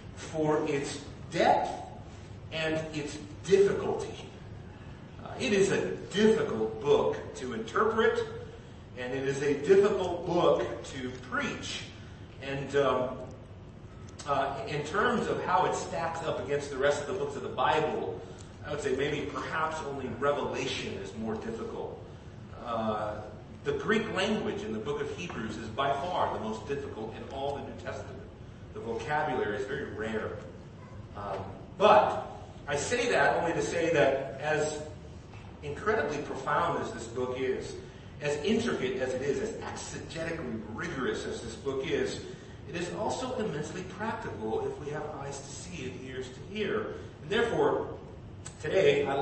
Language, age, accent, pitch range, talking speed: English, 40-59, American, 110-150 Hz, 150 wpm